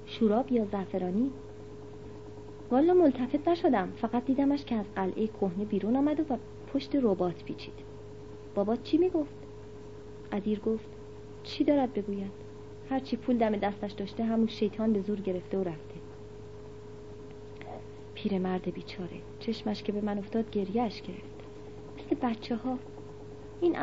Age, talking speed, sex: 40-59, 130 wpm, female